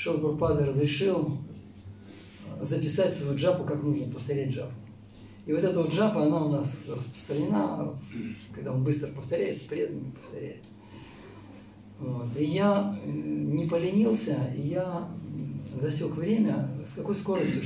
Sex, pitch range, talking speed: male, 110-165 Hz, 125 wpm